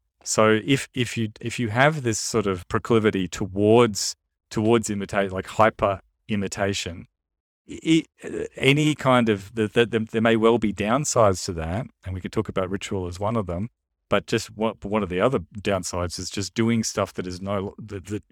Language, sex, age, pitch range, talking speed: English, male, 40-59, 95-115 Hz, 190 wpm